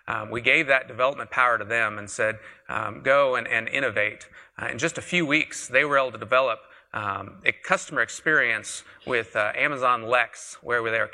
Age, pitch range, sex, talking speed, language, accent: 40-59, 115-145 Hz, male, 200 wpm, English, American